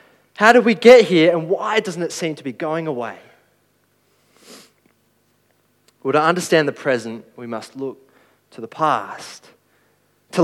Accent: Australian